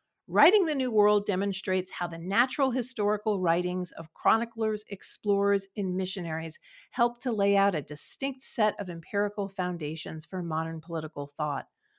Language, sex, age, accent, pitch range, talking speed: English, female, 50-69, American, 180-235 Hz, 145 wpm